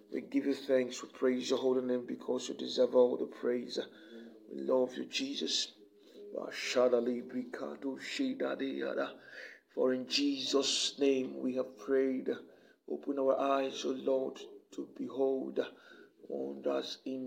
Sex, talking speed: male, 120 wpm